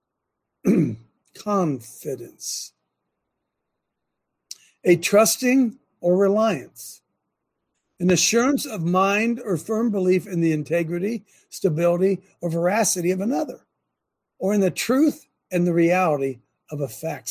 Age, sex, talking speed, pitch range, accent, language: 60-79, male, 105 wpm, 180-235 Hz, American, English